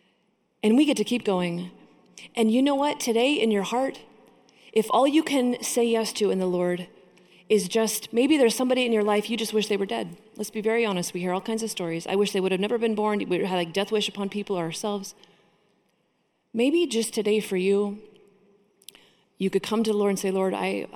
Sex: female